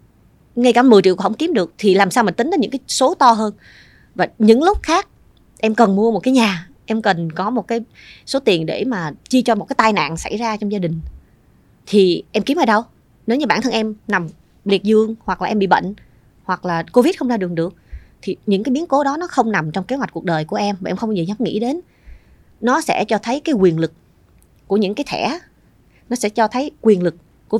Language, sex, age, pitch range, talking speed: Vietnamese, female, 20-39, 185-250 Hz, 250 wpm